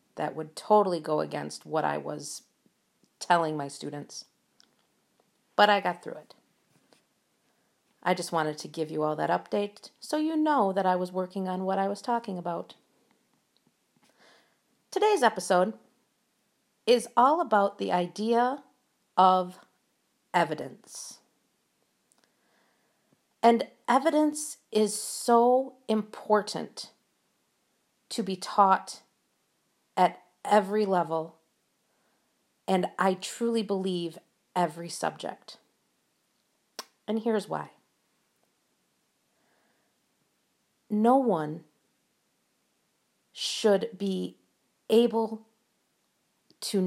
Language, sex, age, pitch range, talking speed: English, female, 50-69, 170-225 Hz, 95 wpm